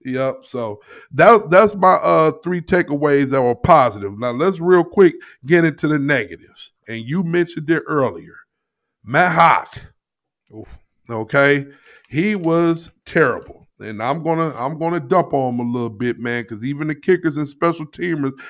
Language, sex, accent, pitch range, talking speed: English, male, American, 130-175 Hz, 160 wpm